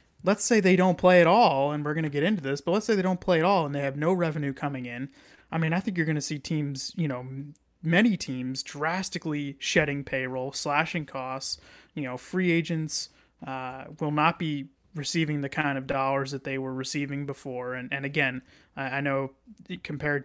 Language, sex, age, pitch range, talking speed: English, male, 30-49, 135-160 Hz, 210 wpm